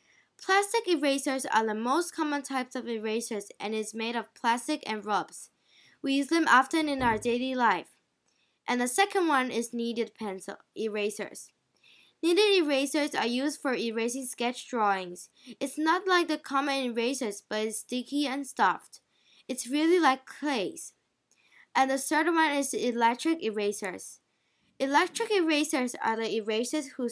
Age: 10-29